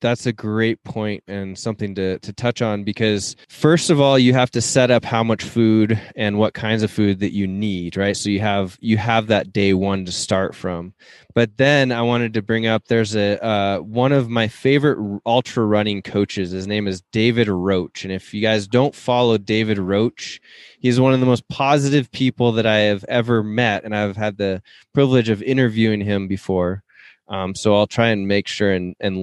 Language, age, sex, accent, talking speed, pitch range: English, 20-39, male, American, 210 wpm, 100-115 Hz